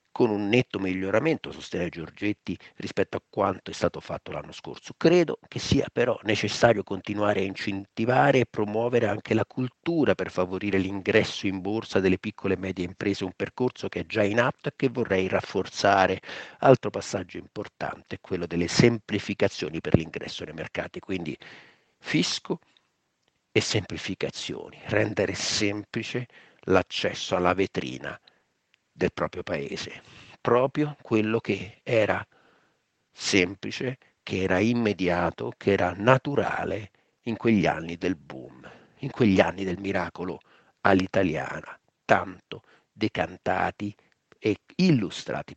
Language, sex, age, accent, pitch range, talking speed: Italian, male, 50-69, native, 95-115 Hz, 130 wpm